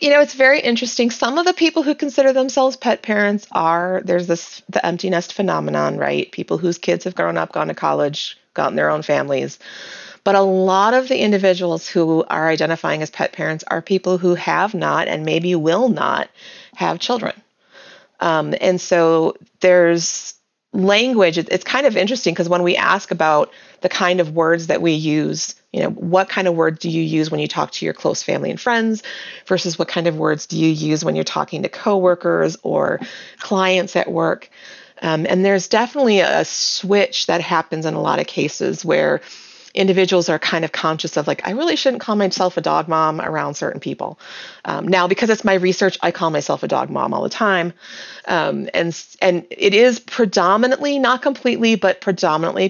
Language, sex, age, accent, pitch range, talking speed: English, female, 30-49, American, 165-220 Hz, 195 wpm